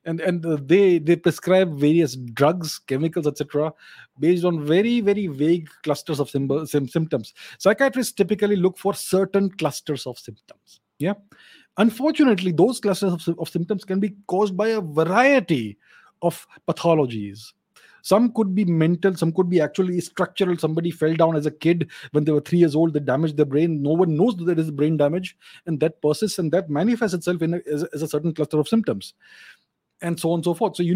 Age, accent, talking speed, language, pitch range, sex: 30-49, Indian, 190 wpm, English, 150-195 Hz, male